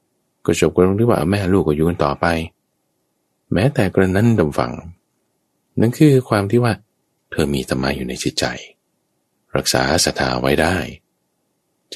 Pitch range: 70-110 Hz